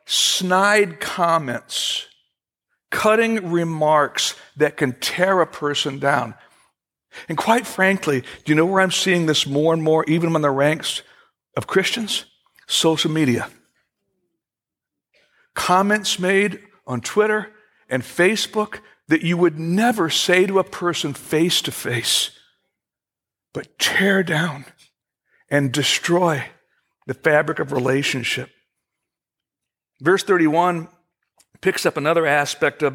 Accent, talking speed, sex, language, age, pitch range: American, 115 wpm, male, English, 60-79, 145-190 Hz